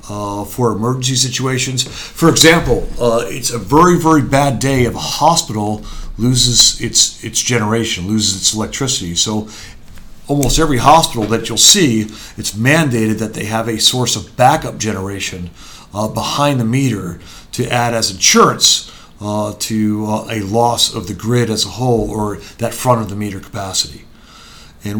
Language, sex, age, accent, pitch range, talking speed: English, male, 50-69, American, 105-125 Hz, 160 wpm